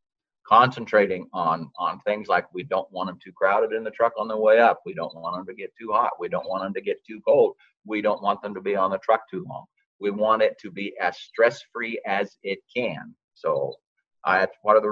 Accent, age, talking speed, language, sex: American, 50-69, 245 wpm, English, male